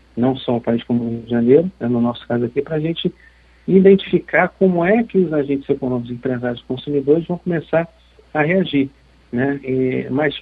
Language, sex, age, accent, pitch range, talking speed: Portuguese, male, 50-69, Brazilian, 120-150 Hz, 195 wpm